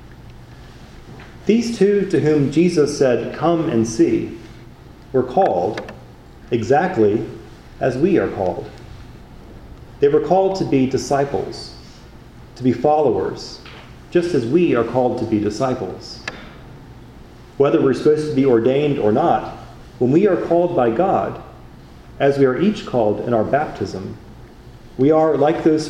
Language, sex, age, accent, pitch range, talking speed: English, male, 40-59, American, 120-170 Hz, 135 wpm